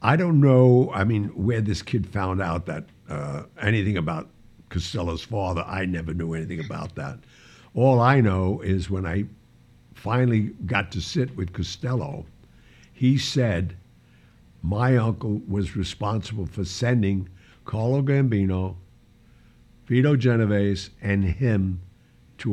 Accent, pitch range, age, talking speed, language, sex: American, 95-120 Hz, 60-79, 130 wpm, English, male